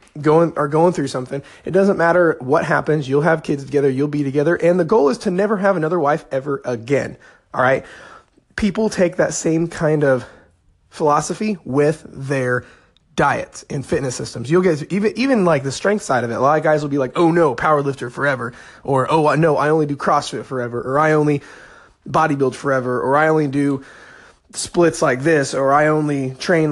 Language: English